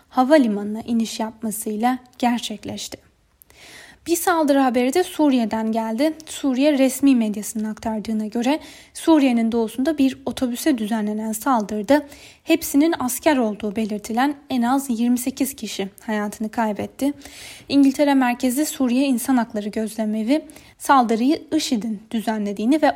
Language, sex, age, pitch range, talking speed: Turkish, female, 10-29, 220-280 Hz, 105 wpm